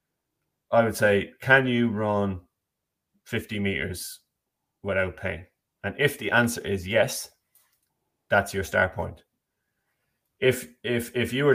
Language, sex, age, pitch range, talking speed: English, male, 20-39, 100-115 Hz, 130 wpm